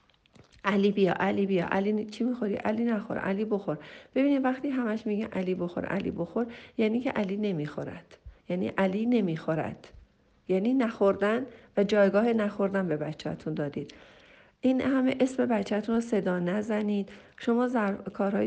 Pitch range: 200-235 Hz